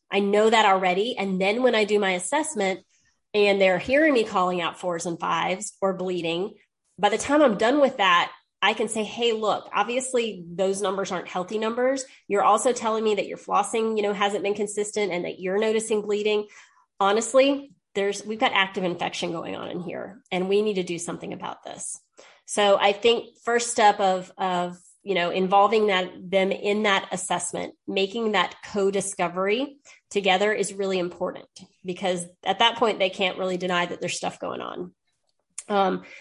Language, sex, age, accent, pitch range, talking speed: English, female, 30-49, American, 185-230 Hz, 185 wpm